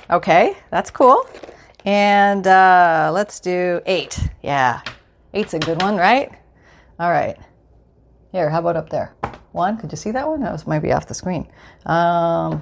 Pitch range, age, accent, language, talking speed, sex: 170-235 Hz, 40-59, American, English, 160 wpm, female